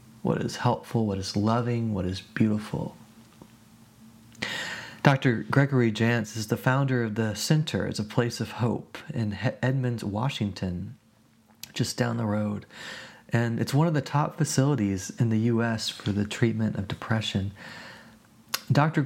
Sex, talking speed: male, 145 wpm